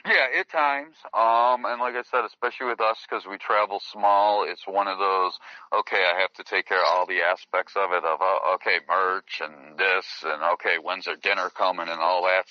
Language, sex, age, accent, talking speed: English, male, 40-59, American, 220 wpm